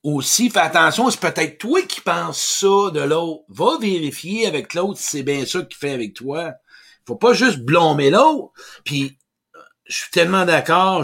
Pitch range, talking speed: 150-215 Hz, 180 wpm